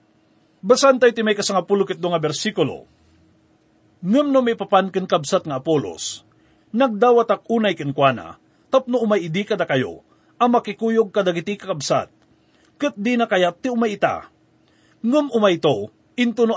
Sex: male